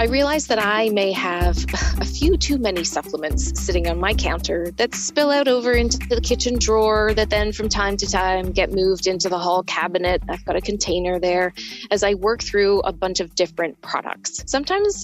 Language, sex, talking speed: English, female, 200 wpm